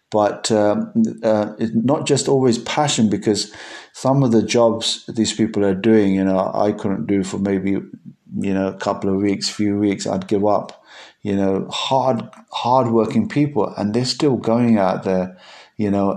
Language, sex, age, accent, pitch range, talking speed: English, male, 50-69, British, 105-125 Hz, 180 wpm